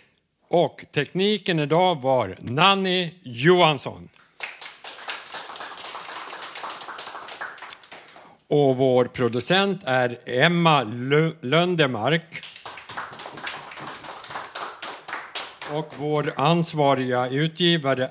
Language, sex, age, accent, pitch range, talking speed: Swedish, male, 60-79, Norwegian, 130-175 Hz, 55 wpm